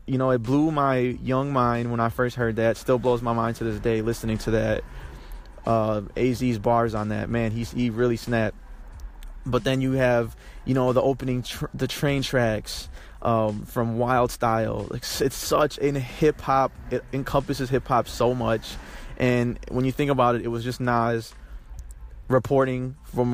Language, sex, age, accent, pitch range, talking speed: English, male, 20-39, American, 115-130 Hz, 175 wpm